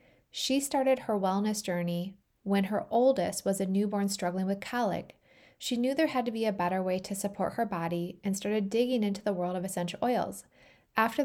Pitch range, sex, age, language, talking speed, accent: 190-235 Hz, female, 20-39, English, 195 wpm, American